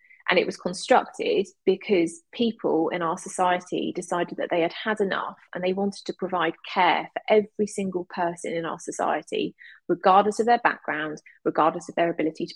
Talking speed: 175 wpm